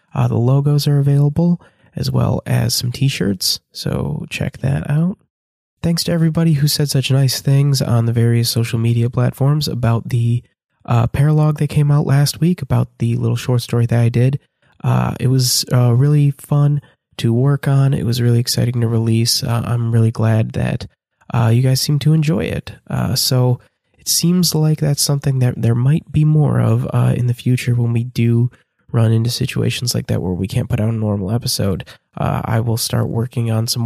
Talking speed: 200 wpm